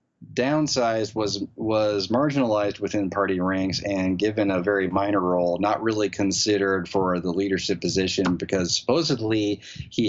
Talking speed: 135 wpm